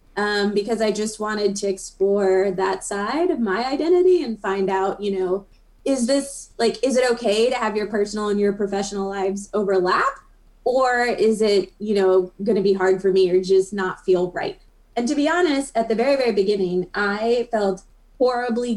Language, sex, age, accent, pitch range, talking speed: English, female, 20-39, American, 195-220 Hz, 190 wpm